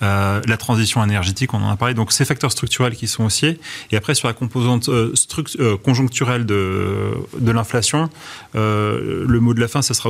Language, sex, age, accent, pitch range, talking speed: French, male, 30-49, French, 110-125 Hz, 210 wpm